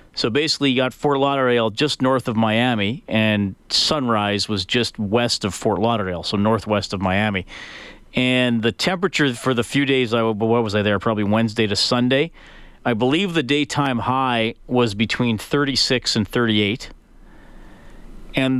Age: 40-59